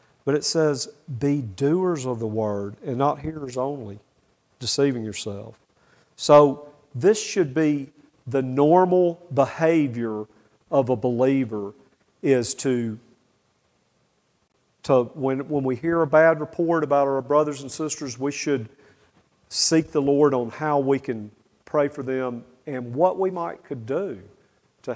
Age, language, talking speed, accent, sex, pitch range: 50-69, English, 140 wpm, American, male, 125-155 Hz